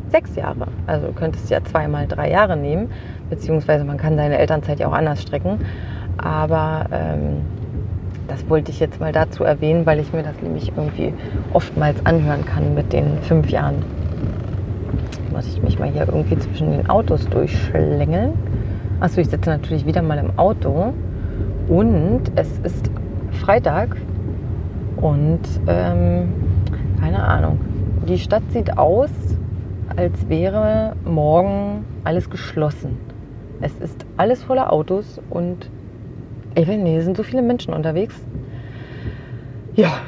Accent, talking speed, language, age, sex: German, 140 wpm, German, 30-49, female